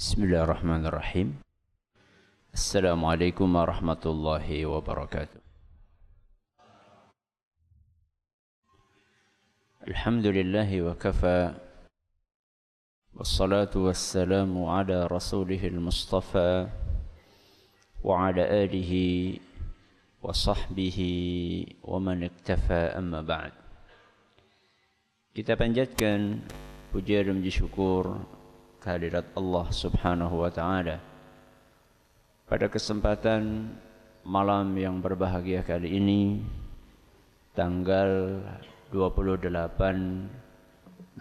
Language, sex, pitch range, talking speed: Malay, male, 90-100 Hz, 60 wpm